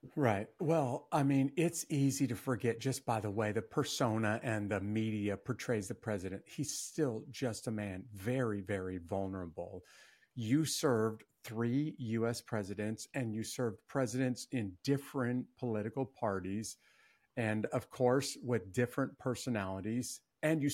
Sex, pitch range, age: male, 110-135 Hz, 50-69